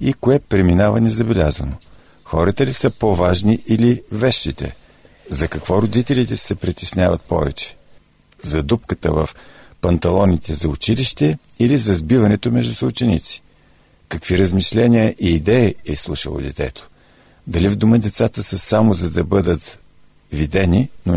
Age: 50-69